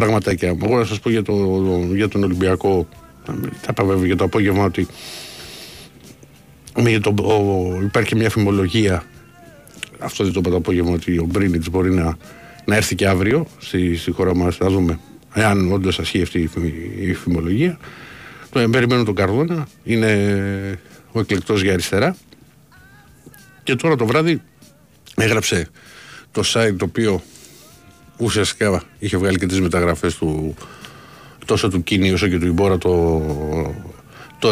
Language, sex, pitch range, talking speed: Greek, male, 90-110 Hz, 145 wpm